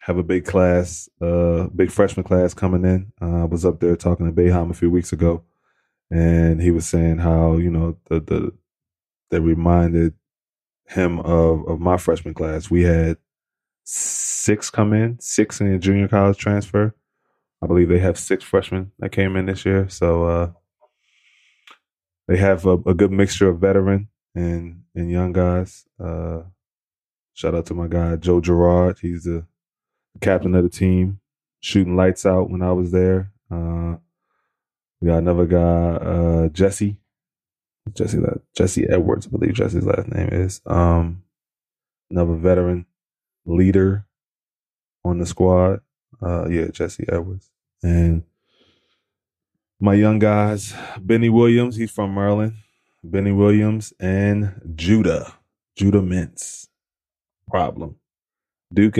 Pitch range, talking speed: 85-100 Hz, 145 wpm